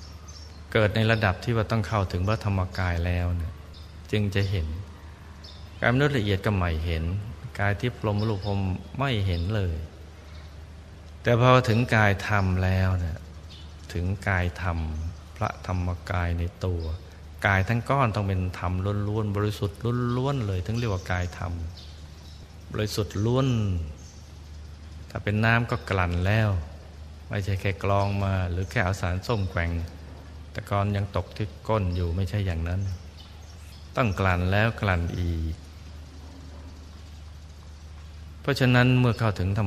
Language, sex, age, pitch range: Thai, male, 20-39, 80-100 Hz